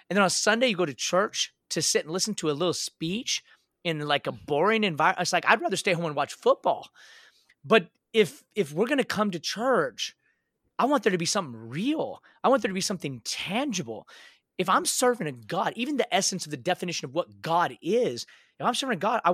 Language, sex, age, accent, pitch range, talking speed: English, male, 30-49, American, 155-220 Hz, 230 wpm